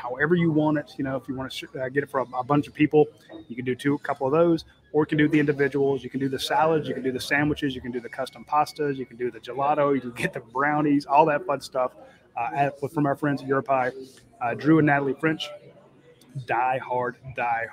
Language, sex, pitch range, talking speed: English, male, 130-150 Hz, 255 wpm